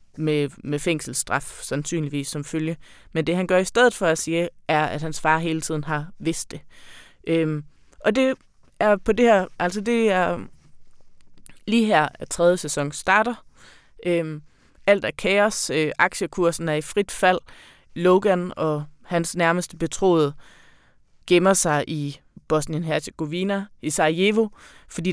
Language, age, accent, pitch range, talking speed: Danish, 20-39, native, 155-195 Hz, 150 wpm